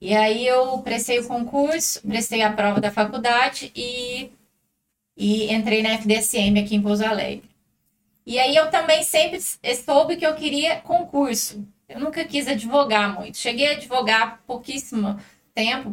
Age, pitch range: 20-39, 200-260 Hz